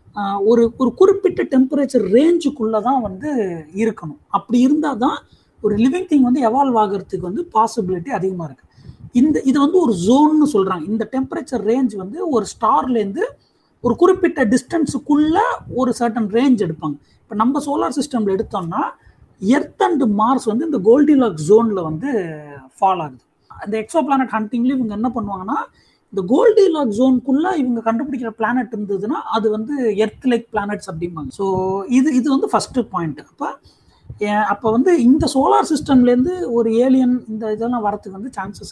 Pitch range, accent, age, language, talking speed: 205-275 Hz, native, 30-49, Tamil, 145 wpm